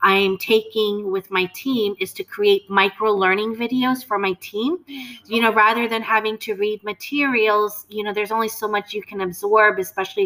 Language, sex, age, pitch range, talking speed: English, female, 30-49, 190-215 Hz, 185 wpm